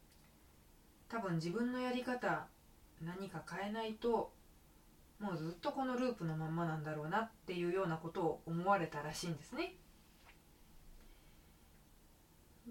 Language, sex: Japanese, female